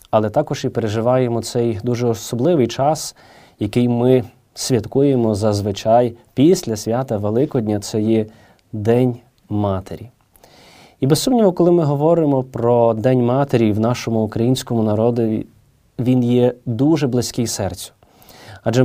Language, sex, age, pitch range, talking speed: Ukrainian, male, 20-39, 115-130 Hz, 120 wpm